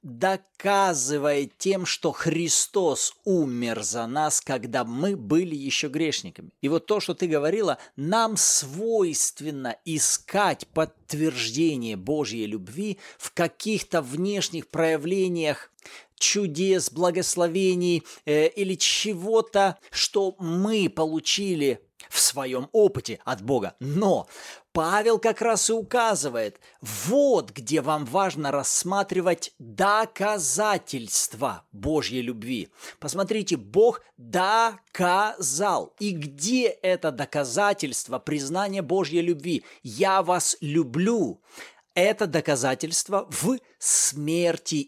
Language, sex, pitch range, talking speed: Russian, male, 150-200 Hz, 100 wpm